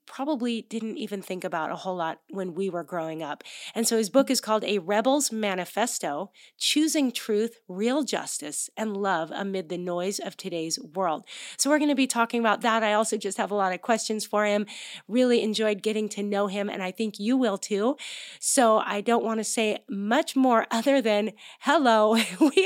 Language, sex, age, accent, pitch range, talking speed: English, female, 30-49, American, 200-250 Hz, 200 wpm